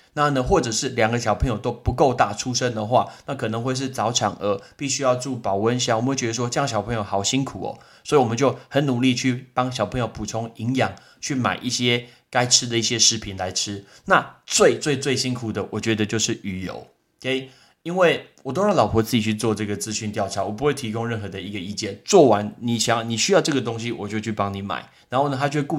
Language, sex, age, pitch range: Chinese, male, 20-39, 105-130 Hz